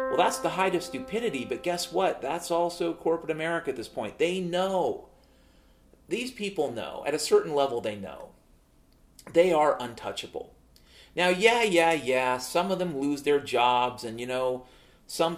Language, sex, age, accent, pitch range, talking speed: English, male, 40-59, American, 140-215 Hz, 170 wpm